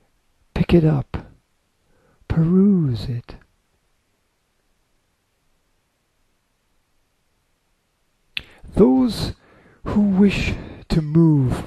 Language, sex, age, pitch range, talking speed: English, male, 50-69, 120-170 Hz, 50 wpm